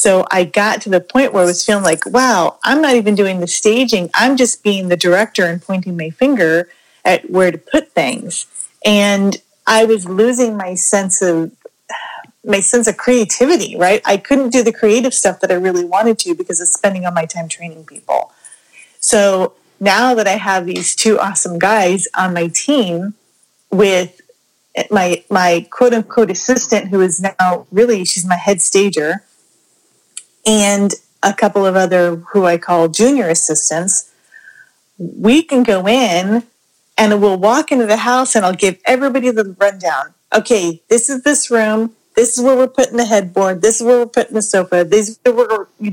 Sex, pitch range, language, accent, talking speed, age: female, 185-240 Hz, English, American, 180 wpm, 30-49